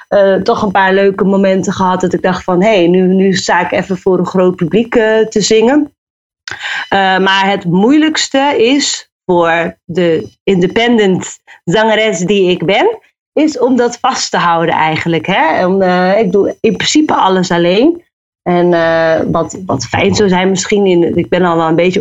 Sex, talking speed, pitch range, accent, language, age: female, 175 wpm, 175-210 Hz, Dutch, Dutch, 30-49